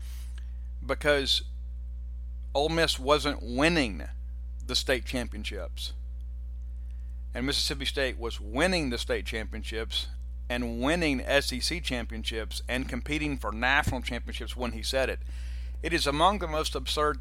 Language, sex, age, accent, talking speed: English, male, 50-69, American, 120 wpm